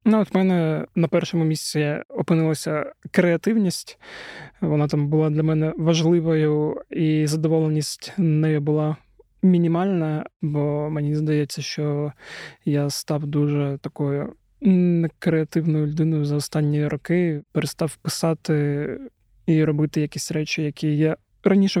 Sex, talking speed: male, 115 wpm